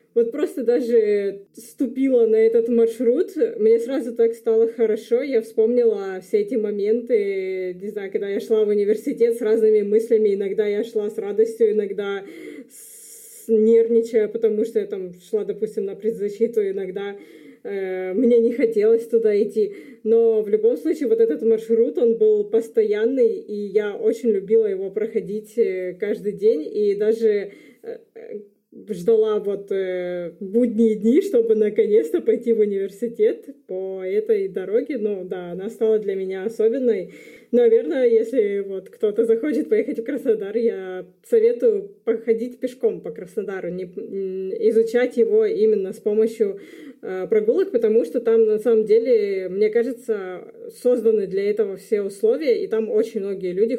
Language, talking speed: Russian, 145 wpm